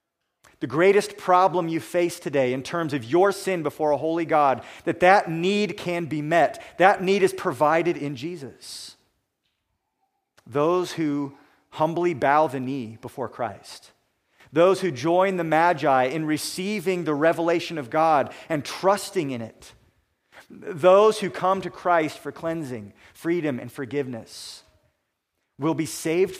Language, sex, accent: English, male, American